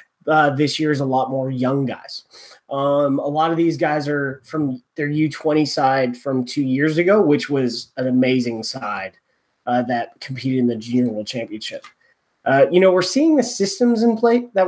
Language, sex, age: English, male, 20-39